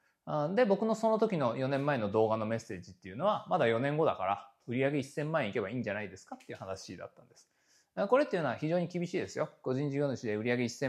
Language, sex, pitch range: Japanese, male, 130-210 Hz